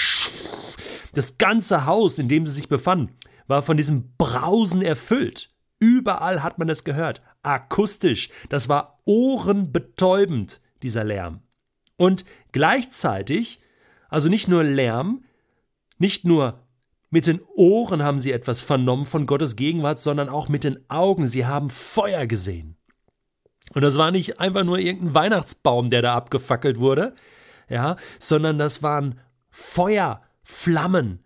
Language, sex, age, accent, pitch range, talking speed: German, male, 40-59, German, 135-185 Hz, 130 wpm